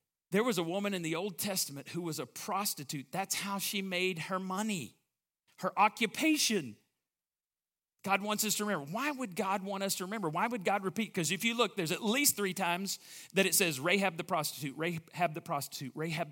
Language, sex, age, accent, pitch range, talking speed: English, male, 40-59, American, 140-195 Hz, 200 wpm